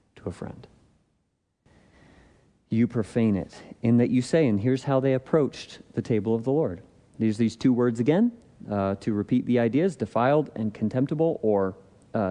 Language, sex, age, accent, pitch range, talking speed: English, male, 40-59, American, 110-155 Hz, 165 wpm